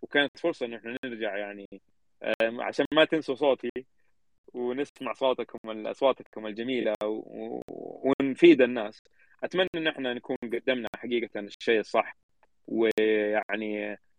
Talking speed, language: 105 wpm, Arabic